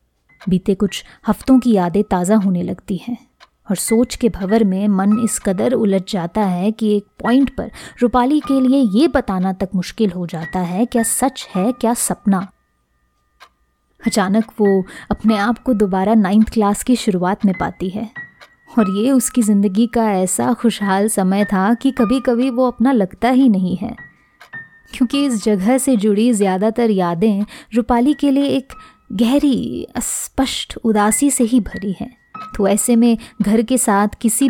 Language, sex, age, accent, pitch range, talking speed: Hindi, female, 20-39, native, 195-240 Hz, 165 wpm